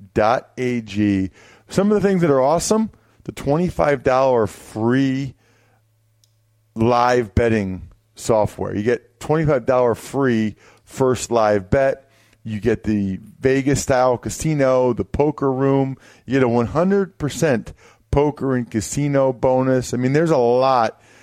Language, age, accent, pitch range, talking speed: English, 40-59, American, 110-140 Hz, 120 wpm